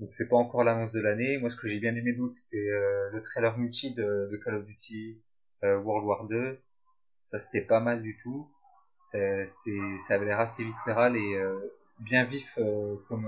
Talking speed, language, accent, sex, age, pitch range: 210 wpm, French, French, male, 30-49, 110-130 Hz